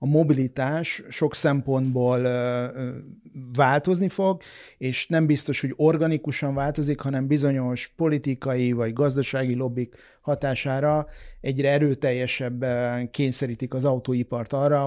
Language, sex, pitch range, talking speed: Hungarian, male, 125-145 Hz, 100 wpm